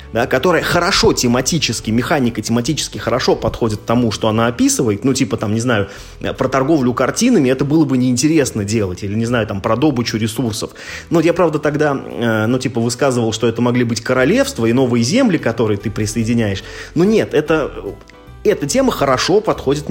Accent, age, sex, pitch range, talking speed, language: native, 20-39, male, 110-145 Hz, 170 wpm, Russian